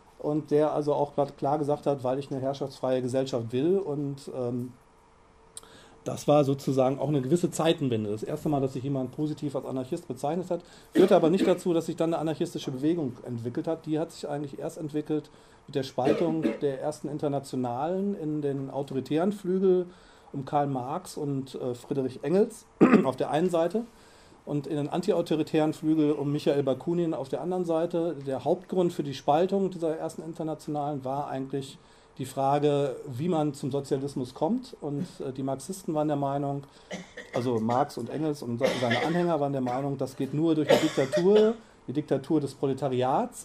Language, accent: German, German